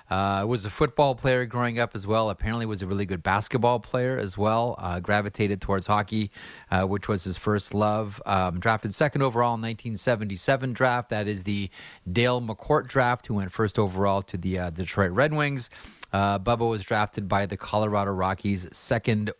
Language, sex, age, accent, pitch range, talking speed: English, male, 30-49, American, 100-120 Hz, 185 wpm